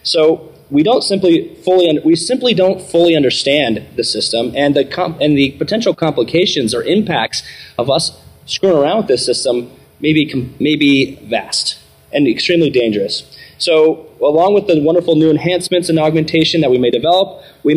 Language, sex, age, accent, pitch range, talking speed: English, male, 30-49, American, 135-190 Hz, 165 wpm